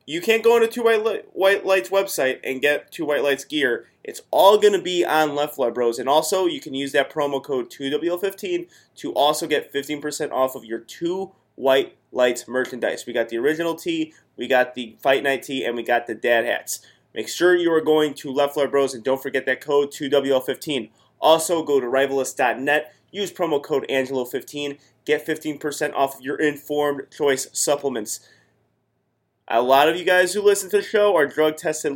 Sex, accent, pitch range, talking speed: male, American, 135-175 Hz, 200 wpm